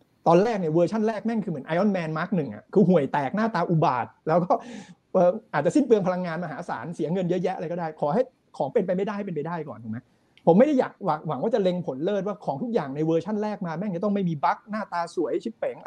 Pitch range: 155-205 Hz